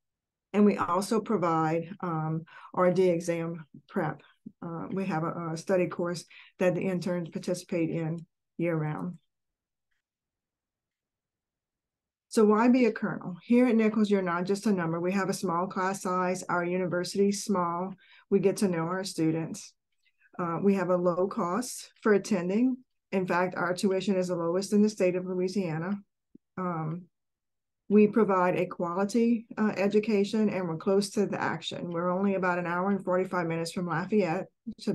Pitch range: 170-200 Hz